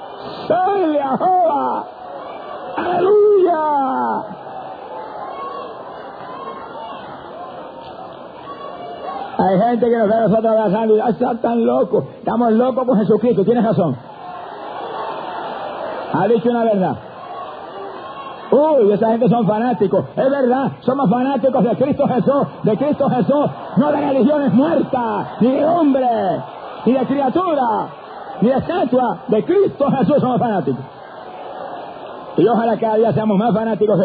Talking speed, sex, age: 110 wpm, male, 50-69